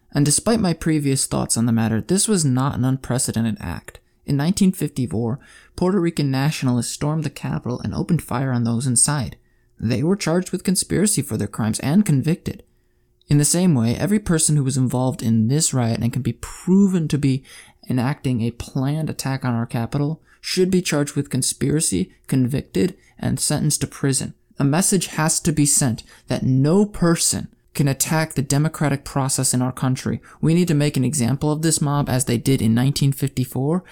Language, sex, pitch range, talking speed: English, male, 125-160 Hz, 185 wpm